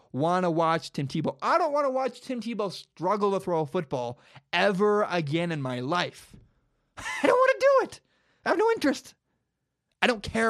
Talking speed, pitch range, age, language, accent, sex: 200 wpm, 135-205 Hz, 20-39, English, American, male